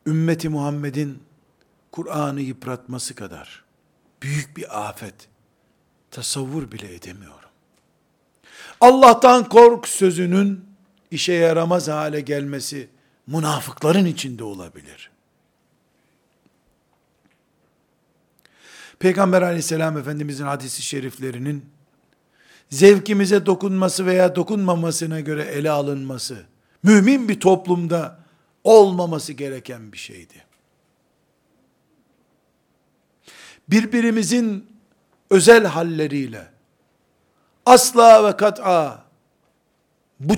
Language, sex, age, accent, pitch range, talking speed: Turkish, male, 50-69, native, 140-190 Hz, 70 wpm